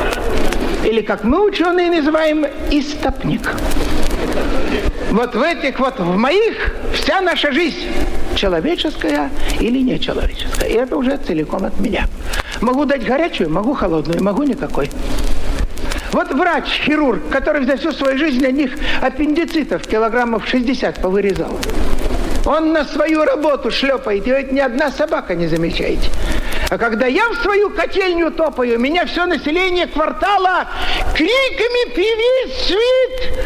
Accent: native